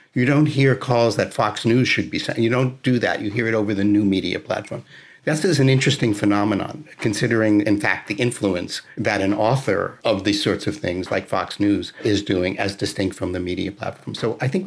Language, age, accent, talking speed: English, 50-69, American, 220 wpm